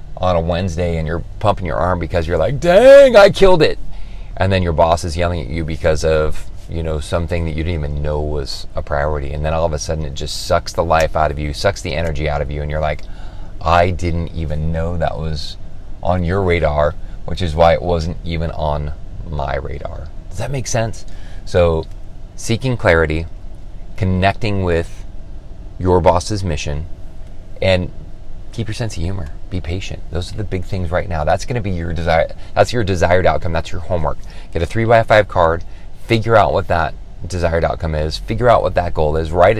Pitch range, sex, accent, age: 80-95 Hz, male, American, 30-49